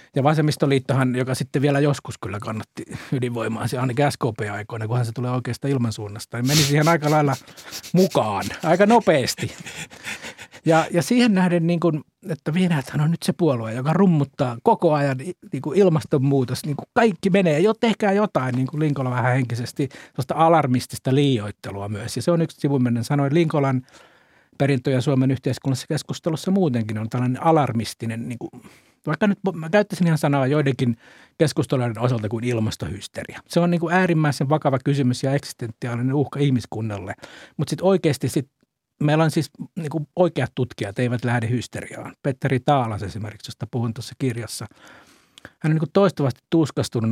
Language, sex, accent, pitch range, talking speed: Finnish, male, native, 120-160 Hz, 155 wpm